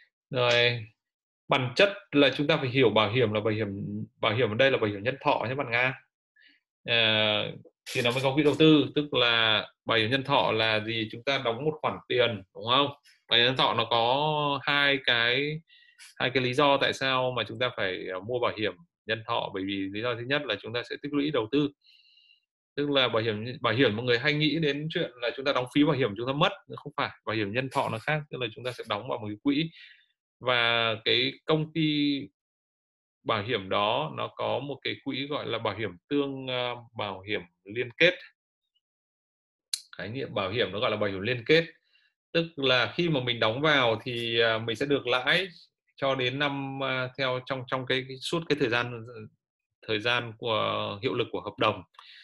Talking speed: 215 wpm